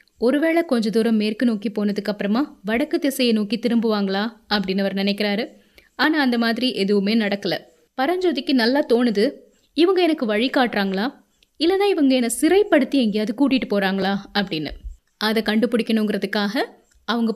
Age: 20-39